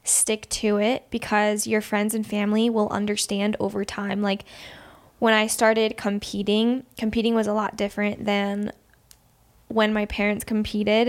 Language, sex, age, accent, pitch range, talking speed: English, female, 10-29, American, 205-225 Hz, 145 wpm